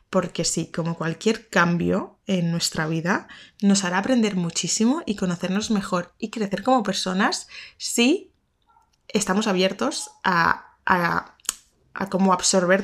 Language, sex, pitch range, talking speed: Spanish, female, 180-220 Hz, 130 wpm